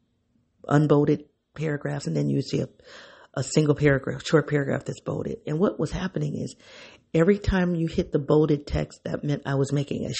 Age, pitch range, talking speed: 40-59, 125-150 Hz, 190 wpm